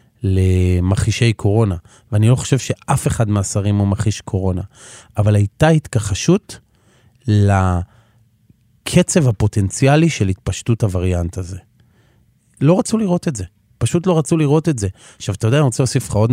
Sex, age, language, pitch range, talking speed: male, 30-49, Hebrew, 105-130 Hz, 145 wpm